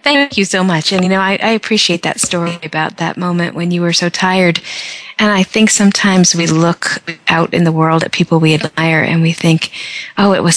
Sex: female